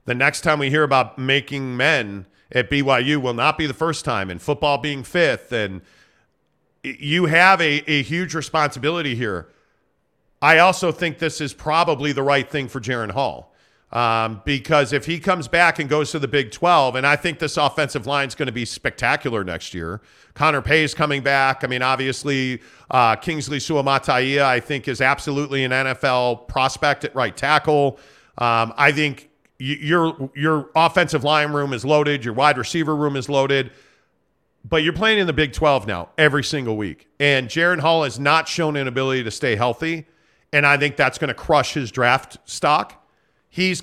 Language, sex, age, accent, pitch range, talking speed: English, male, 40-59, American, 130-155 Hz, 185 wpm